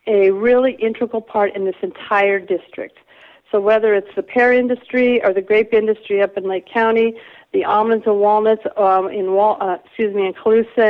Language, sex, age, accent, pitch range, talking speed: English, female, 50-69, American, 190-220 Hz, 185 wpm